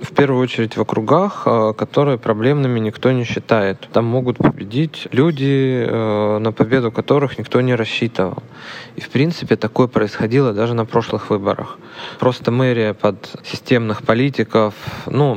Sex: male